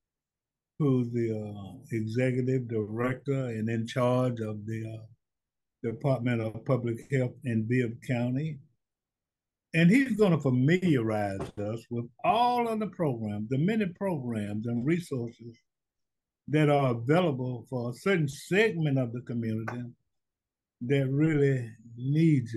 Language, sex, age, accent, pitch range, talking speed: English, male, 60-79, American, 120-160 Hz, 120 wpm